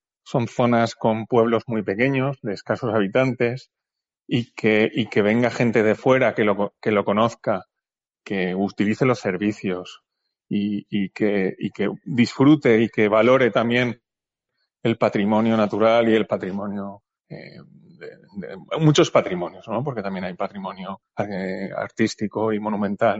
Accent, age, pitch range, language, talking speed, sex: Spanish, 30-49, 105-130 Hz, Spanish, 135 wpm, male